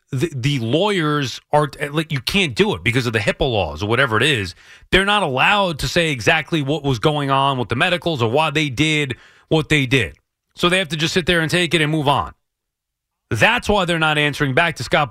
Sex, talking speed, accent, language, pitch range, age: male, 235 wpm, American, English, 130-195 Hz, 30-49